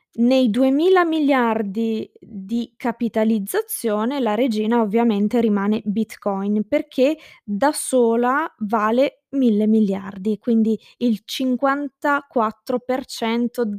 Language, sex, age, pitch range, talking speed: Italian, female, 20-39, 220-275 Hz, 85 wpm